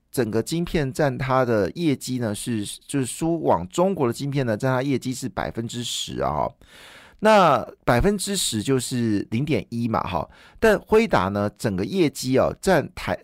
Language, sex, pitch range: Chinese, male, 115-160 Hz